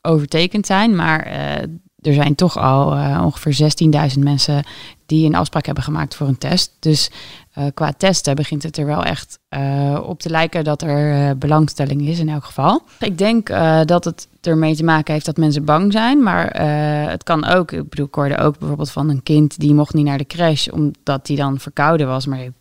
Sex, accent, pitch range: female, Dutch, 140-180 Hz